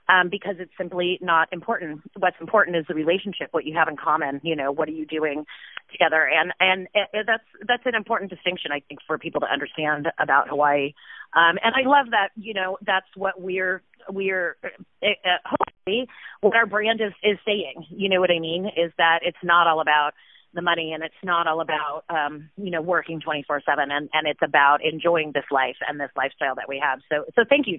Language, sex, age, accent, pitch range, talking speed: English, female, 30-49, American, 165-235 Hz, 215 wpm